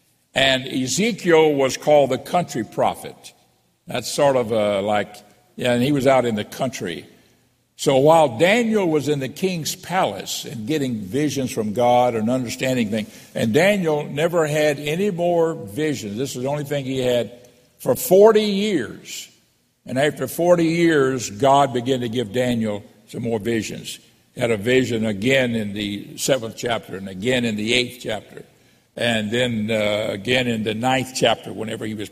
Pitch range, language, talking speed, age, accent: 115-155 Hz, English, 170 wpm, 60-79, American